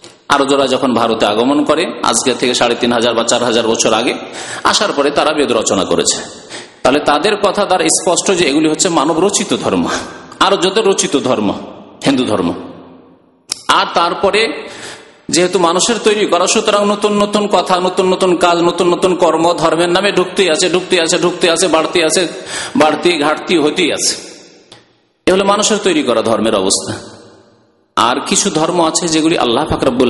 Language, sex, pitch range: Bengali, male, 125-200 Hz